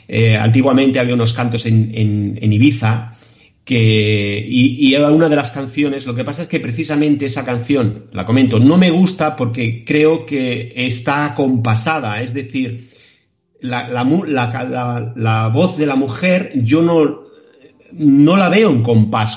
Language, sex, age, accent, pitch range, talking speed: Spanish, male, 40-59, Spanish, 115-145 Hz, 150 wpm